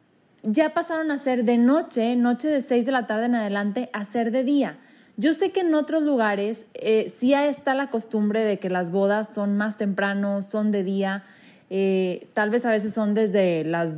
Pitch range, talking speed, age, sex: 220-280 Hz, 200 wpm, 20-39, female